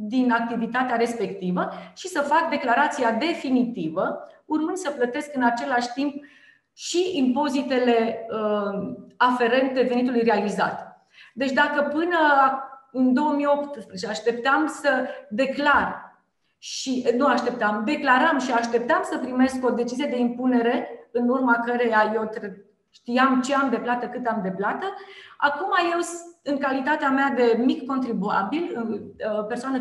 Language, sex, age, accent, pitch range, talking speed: Romanian, female, 30-49, native, 235-280 Hz, 125 wpm